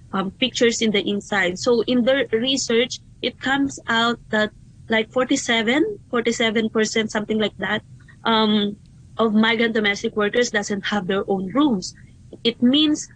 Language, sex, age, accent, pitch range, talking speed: English, female, 20-39, Filipino, 210-265 Hz, 135 wpm